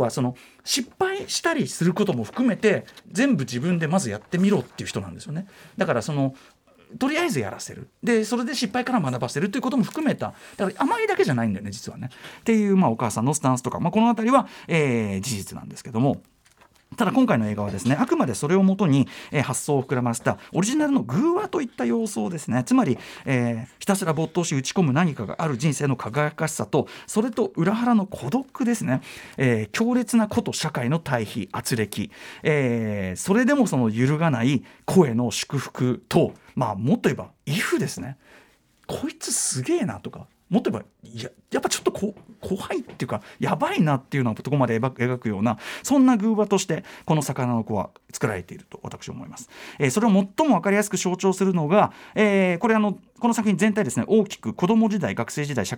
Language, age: Japanese, 40-59